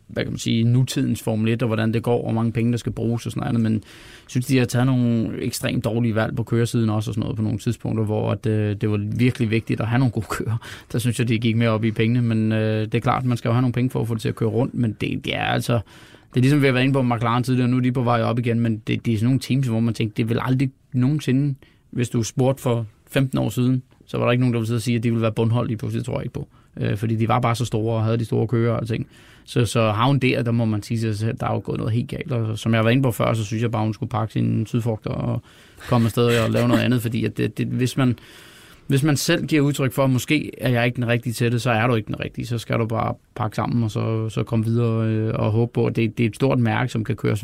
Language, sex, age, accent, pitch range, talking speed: Danish, male, 20-39, native, 115-125 Hz, 320 wpm